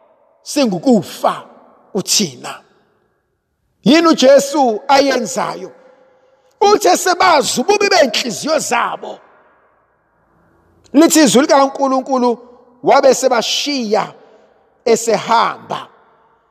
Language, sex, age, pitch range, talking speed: English, male, 50-69, 225-320 Hz, 85 wpm